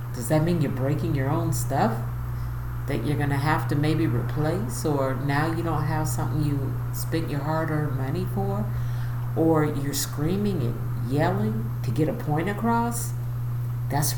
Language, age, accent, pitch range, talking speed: English, 50-69, American, 120-140 Hz, 165 wpm